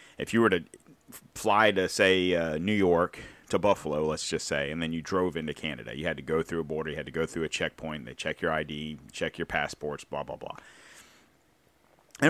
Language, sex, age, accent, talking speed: English, male, 40-59, American, 225 wpm